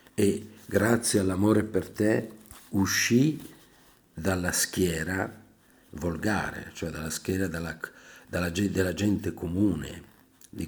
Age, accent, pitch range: 50-69, native, 85-105 Hz